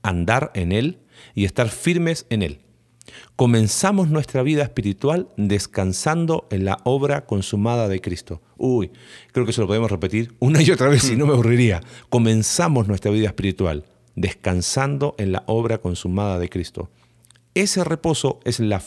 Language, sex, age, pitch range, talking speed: Spanish, male, 40-59, 100-125 Hz, 155 wpm